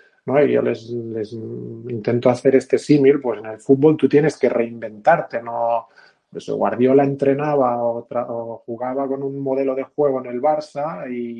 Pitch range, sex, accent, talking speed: 120-145 Hz, male, Spanish, 180 wpm